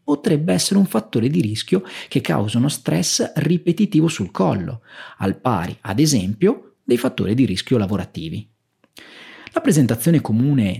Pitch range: 115-190 Hz